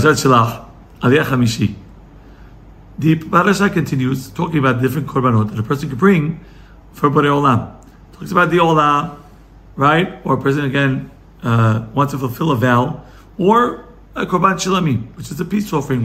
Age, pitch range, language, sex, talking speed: 50-69, 125-175 Hz, English, male, 140 wpm